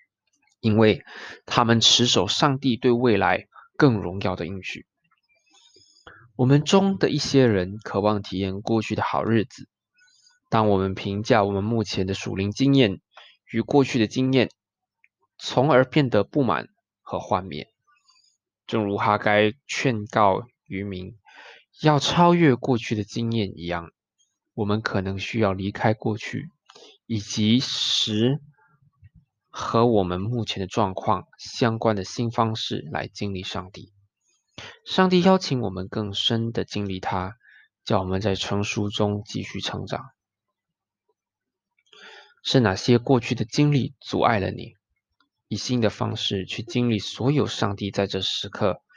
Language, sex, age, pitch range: Chinese, male, 20-39, 100-130 Hz